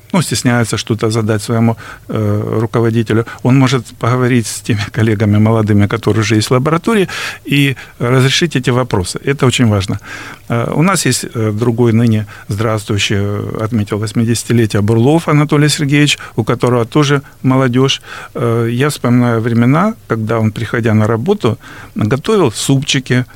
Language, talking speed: Russian, 130 wpm